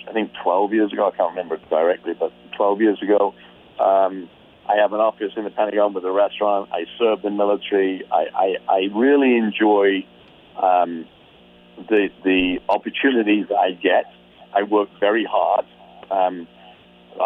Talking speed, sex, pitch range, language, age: 155 wpm, male, 90-105 Hz, English, 40-59